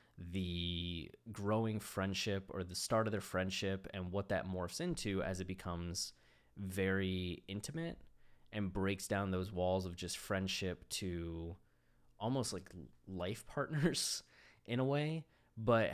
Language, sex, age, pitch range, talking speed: English, male, 20-39, 90-110 Hz, 135 wpm